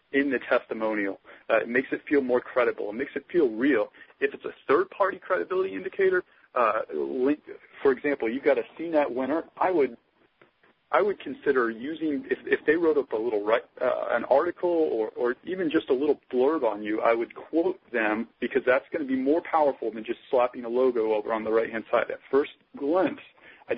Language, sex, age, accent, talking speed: English, male, 40-59, American, 205 wpm